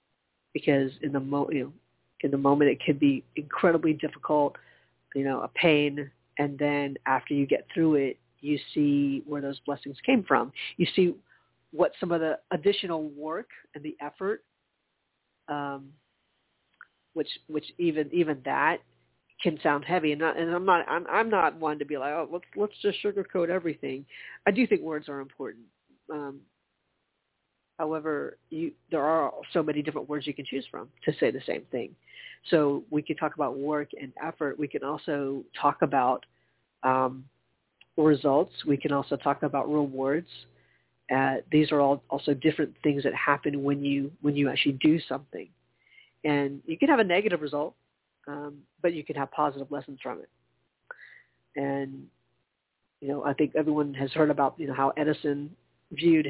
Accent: American